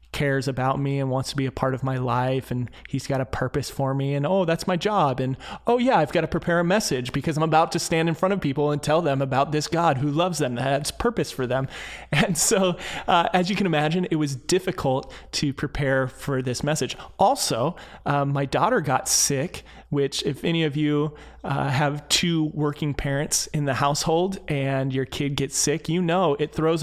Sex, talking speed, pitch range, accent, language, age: male, 220 wpm, 135-165 Hz, American, English, 30-49